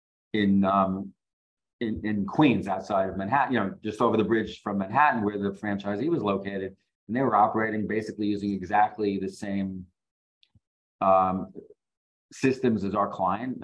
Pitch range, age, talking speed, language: 95-110 Hz, 40-59, 155 wpm, English